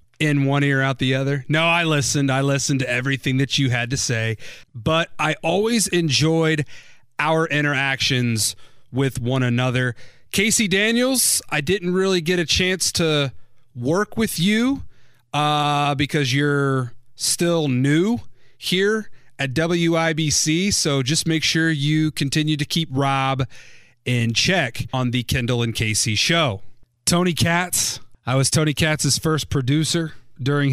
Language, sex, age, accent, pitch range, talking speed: English, male, 30-49, American, 125-155 Hz, 145 wpm